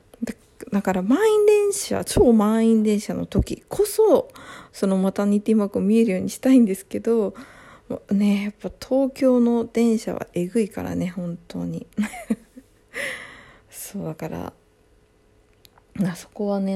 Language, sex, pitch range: Japanese, female, 175-225 Hz